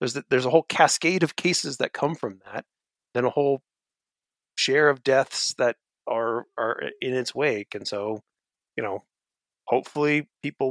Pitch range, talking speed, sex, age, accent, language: 110-145 Hz, 170 wpm, male, 30-49, American, English